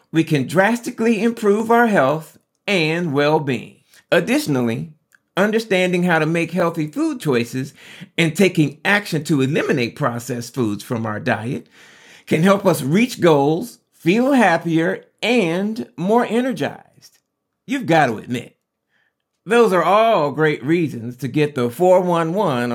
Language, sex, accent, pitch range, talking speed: English, male, American, 135-195 Hz, 130 wpm